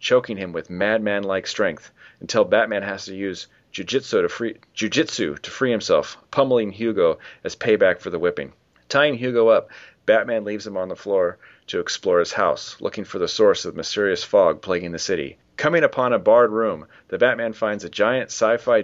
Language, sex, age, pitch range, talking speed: English, male, 30-49, 95-120 Hz, 180 wpm